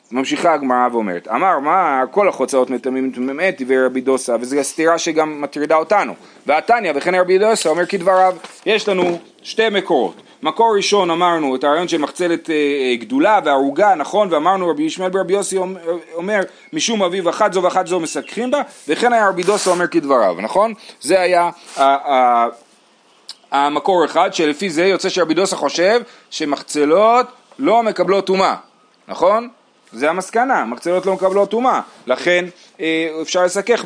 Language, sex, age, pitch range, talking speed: Hebrew, male, 30-49, 155-200 Hz, 115 wpm